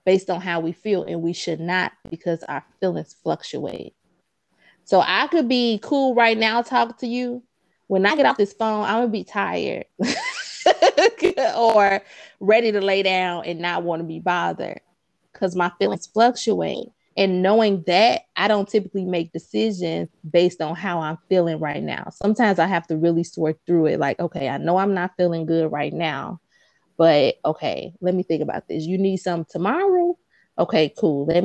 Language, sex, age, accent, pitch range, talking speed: English, female, 20-39, American, 165-215 Hz, 185 wpm